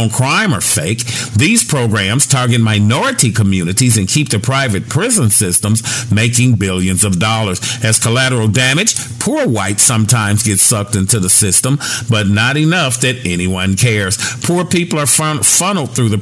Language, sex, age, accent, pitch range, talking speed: English, male, 50-69, American, 105-140 Hz, 150 wpm